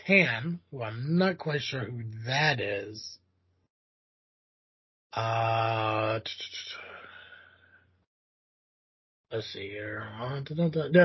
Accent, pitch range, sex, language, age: American, 135-180 Hz, male, English, 30-49